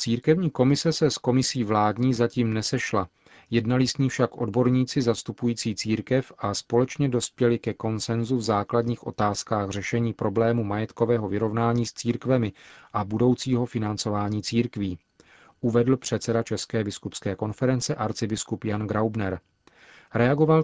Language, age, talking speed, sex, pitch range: Czech, 40-59, 120 wpm, male, 110-125 Hz